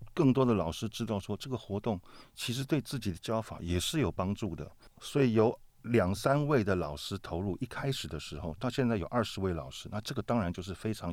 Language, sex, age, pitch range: Chinese, male, 50-69, 90-120 Hz